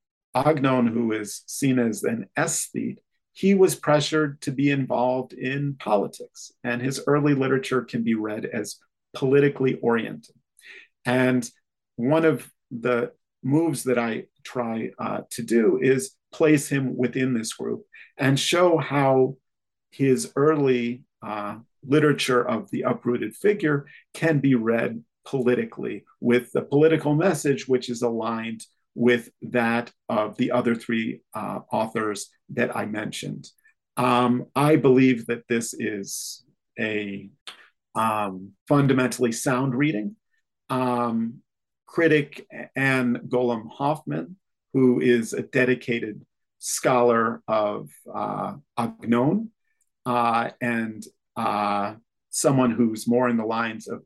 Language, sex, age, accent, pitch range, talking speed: English, male, 40-59, American, 115-145 Hz, 120 wpm